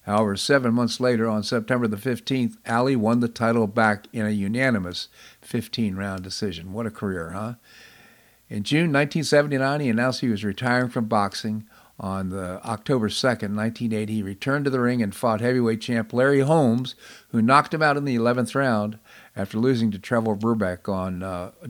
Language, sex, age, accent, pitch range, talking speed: English, male, 50-69, American, 105-125 Hz, 175 wpm